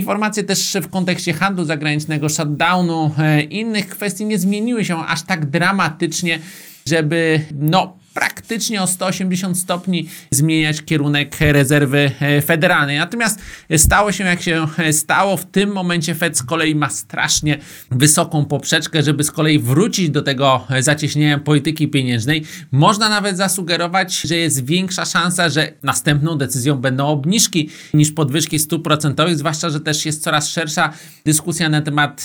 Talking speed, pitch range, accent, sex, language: 140 wpm, 150-175 Hz, native, male, Polish